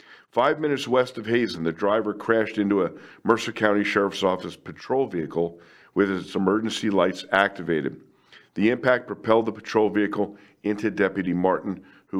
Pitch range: 90-110 Hz